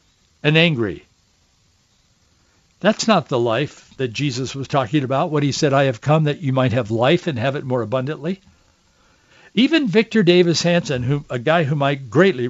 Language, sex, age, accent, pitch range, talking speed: English, male, 60-79, American, 130-175 Hz, 180 wpm